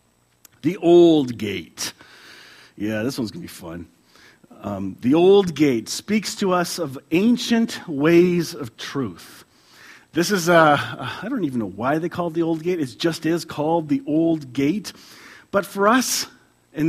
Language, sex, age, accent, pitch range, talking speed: English, male, 40-59, American, 130-180 Hz, 180 wpm